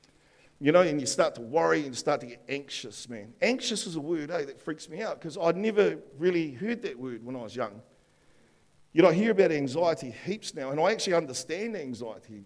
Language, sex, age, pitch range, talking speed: English, male, 50-69, 125-205 Hz, 225 wpm